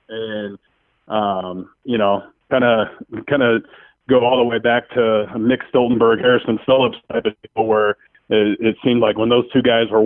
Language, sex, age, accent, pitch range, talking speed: English, male, 30-49, American, 105-120 Hz, 185 wpm